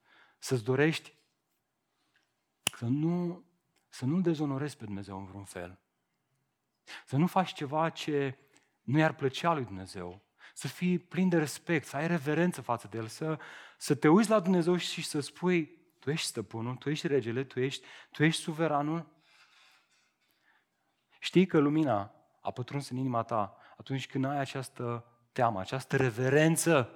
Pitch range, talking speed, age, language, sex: 110-155 Hz, 150 wpm, 30-49, Romanian, male